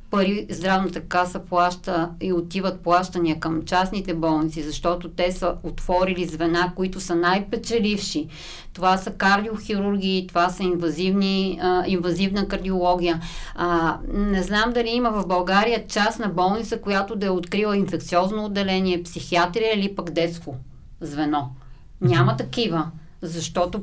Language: Bulgarian